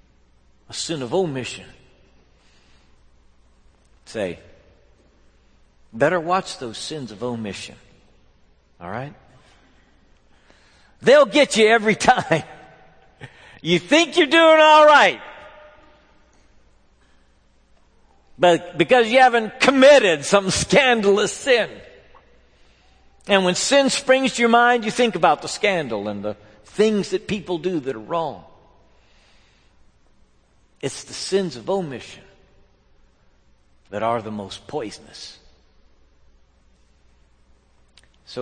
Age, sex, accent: 60-79, male, American